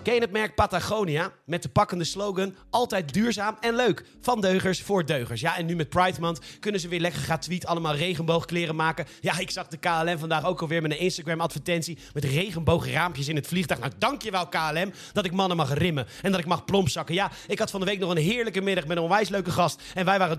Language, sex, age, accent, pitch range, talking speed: Dutch, male, 40-59, Dutch, 165-210 Hz, 235 wpm